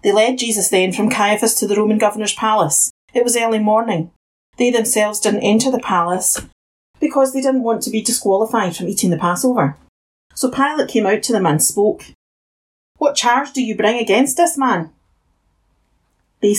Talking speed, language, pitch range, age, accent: 175 wpm, English, 180-250 Hz, 40-59, British